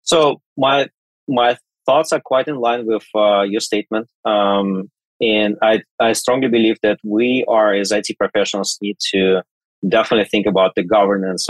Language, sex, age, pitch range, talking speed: English, male, 30-49, 105-130 Hz, 160 wpm